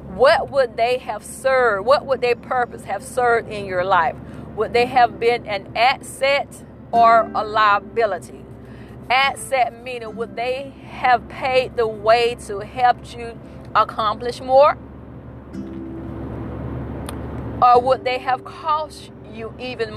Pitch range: 210-265 Hz